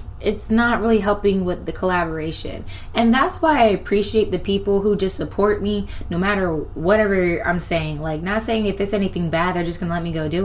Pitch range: 150-205 Hz